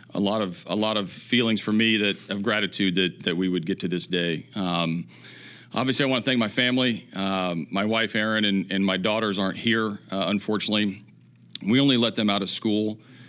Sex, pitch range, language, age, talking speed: male, 90-110 Hz, English, 40-59, 210 wpm